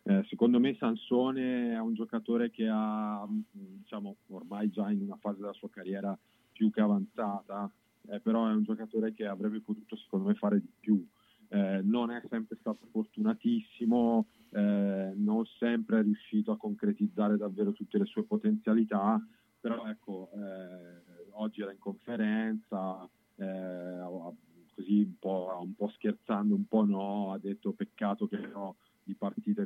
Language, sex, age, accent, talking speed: Italian, male, 40-59, native, 150 wpm